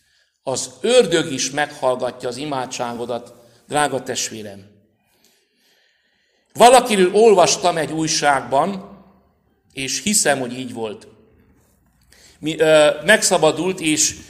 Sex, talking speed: male, 80 wpm